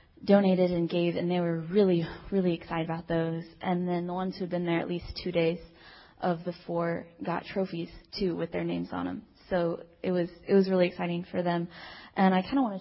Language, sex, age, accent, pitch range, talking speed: English, female, 20-39, American, 170-195 Hz, 225 wpm